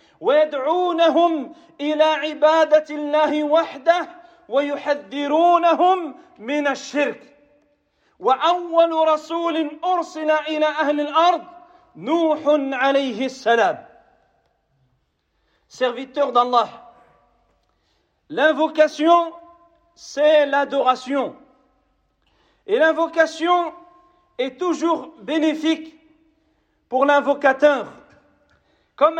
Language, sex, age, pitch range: French, male, 40-59, 285-330 Hz